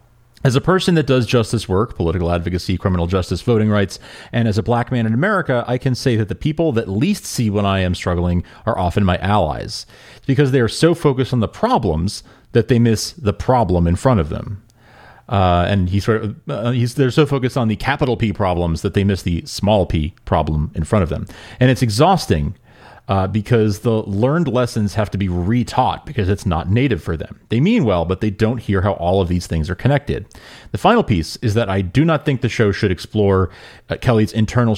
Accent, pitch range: American, 90-120 Hz